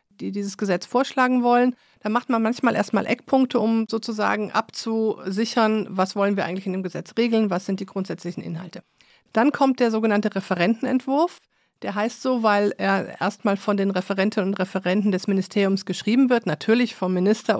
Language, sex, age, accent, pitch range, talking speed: German, female, 50-69, German, 195-235 Hz, 170 wpm